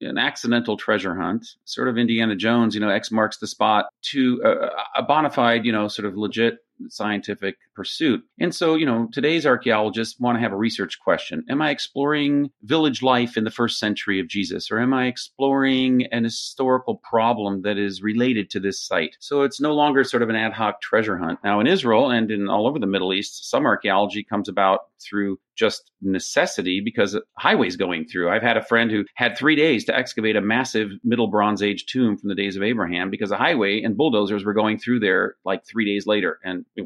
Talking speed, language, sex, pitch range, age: 215 wpm, English, male, 105-140 Hz, 40-59